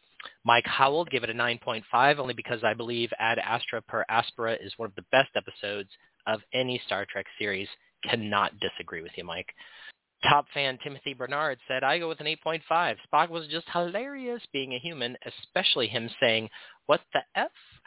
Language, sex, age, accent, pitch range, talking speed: English, male, 40-59, American, 115-150 Hz, 180 wpm